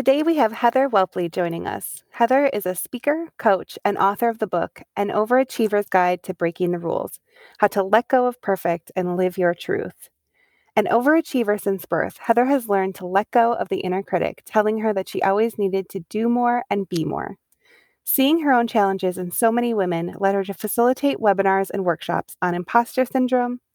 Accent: American